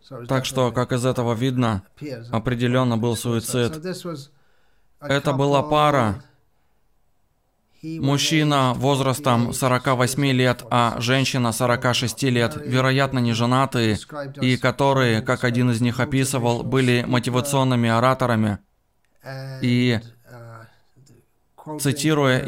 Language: Russian